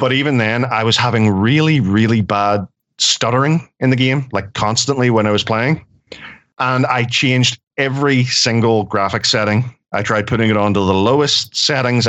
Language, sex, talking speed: English, male, 170 wpm